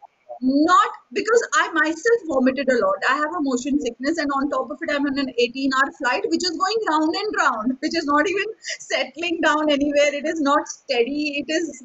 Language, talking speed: English, 215 wpm